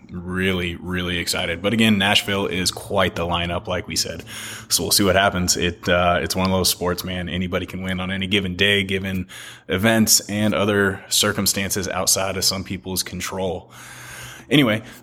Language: English